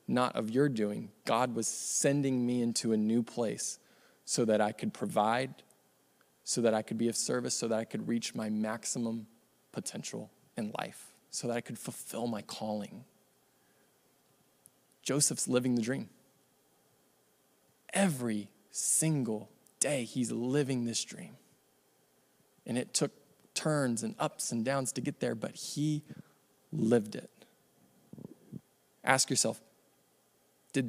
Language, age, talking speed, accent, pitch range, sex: English, 20-39, 135 wpm, American, 115-135 Hz, male